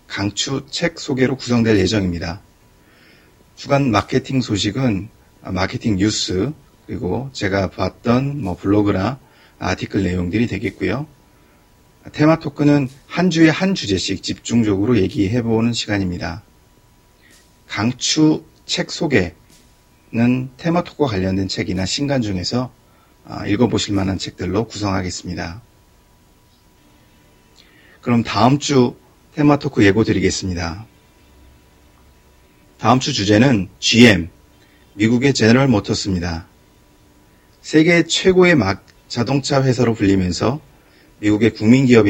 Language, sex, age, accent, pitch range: Korean, male, 40-59, native, 95-125 Hz